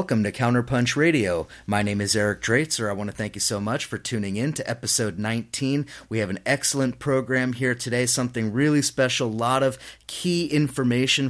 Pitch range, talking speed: 115-140 Hz, 195 wpm